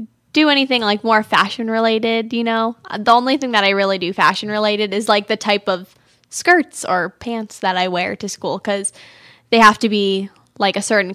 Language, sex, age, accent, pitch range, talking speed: English, female, 10-29, American, 190-235 Hz, 205 wpm